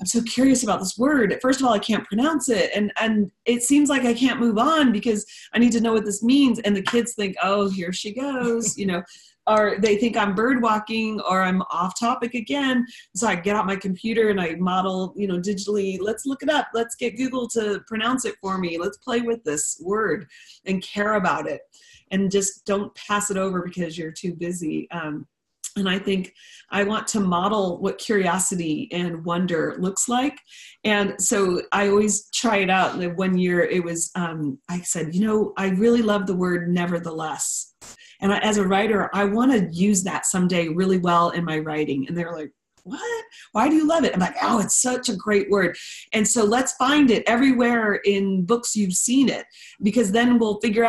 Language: English